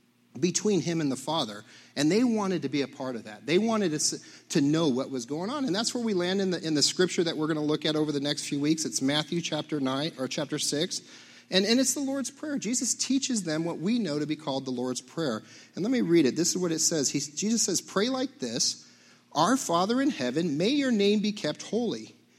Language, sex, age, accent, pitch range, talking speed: English, male, 40-59, American, 135-205 Hz, 255 wpm